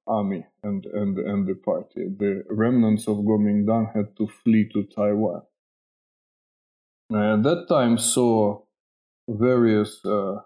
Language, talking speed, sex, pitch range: English, 120 wpm, male, 105-120 Hz